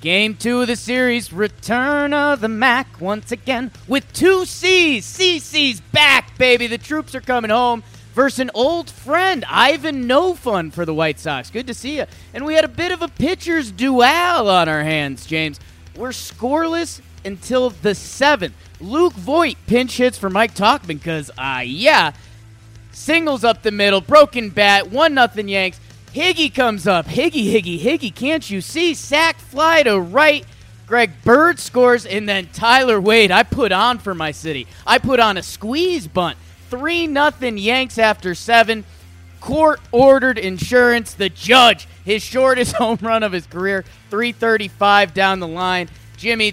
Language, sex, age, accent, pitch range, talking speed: English, male, 30-49, American, 195-260 Hz, 165 wpm